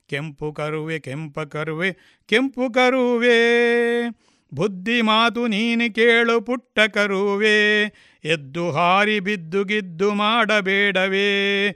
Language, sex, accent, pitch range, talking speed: Kannada, male, native, 155-210 Hz, 85 wpm